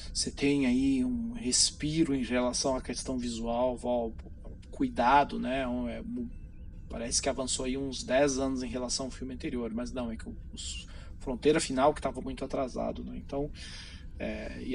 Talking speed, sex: 165 wpm, male